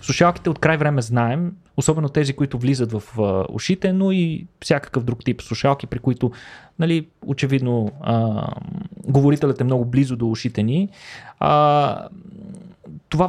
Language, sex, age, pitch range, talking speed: Bulgarian, male, 20-39, 120-150 Hz, 140 wpm